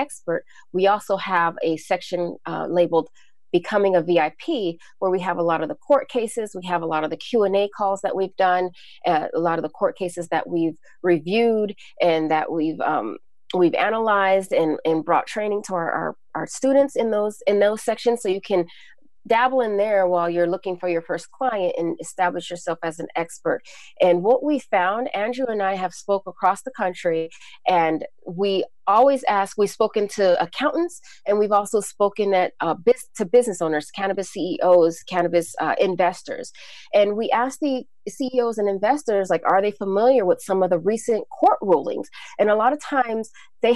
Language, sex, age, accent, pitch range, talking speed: English, female, 30-49, American, 175-225 Hz, 190 wpm